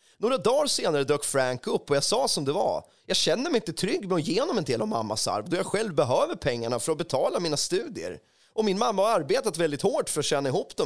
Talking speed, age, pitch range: 255 wpm, 30-49, 130-215 Hz